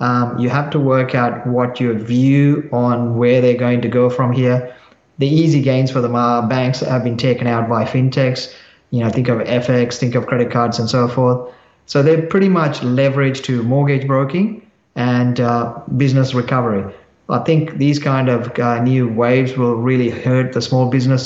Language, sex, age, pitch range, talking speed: English, male, 30-49, 120-140 Hz, 195 wpm